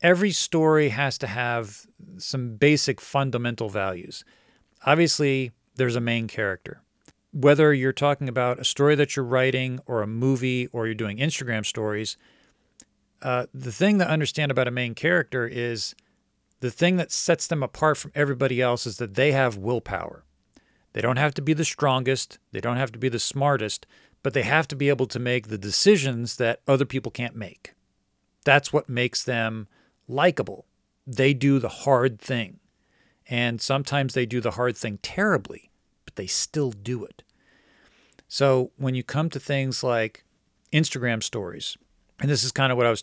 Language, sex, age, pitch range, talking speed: English, male, 40-59, 120-145 Hz, 175 wpm